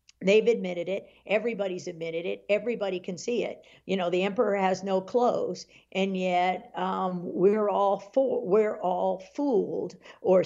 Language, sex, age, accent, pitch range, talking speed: English, female, 50-69, American, 180-210 Hz, 155 wpm